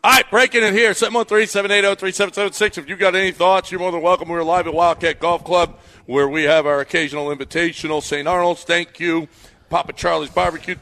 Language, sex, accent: English, male, American